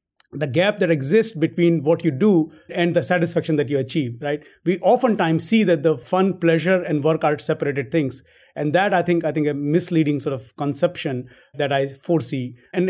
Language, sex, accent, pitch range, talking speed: English, male, Indian, 145-180 Hz, 195 wpm